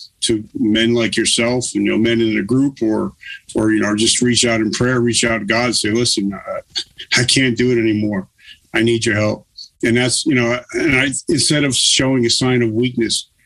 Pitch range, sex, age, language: 115-130 Hz, male, 50-69, English